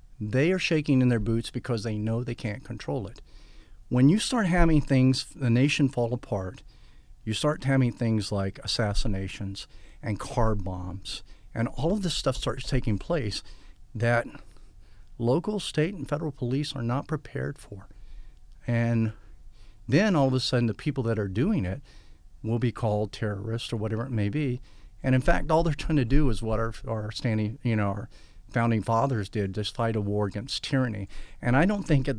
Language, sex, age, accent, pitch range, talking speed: English, male, 50-69, American, 105-135 Hz, 185 wpm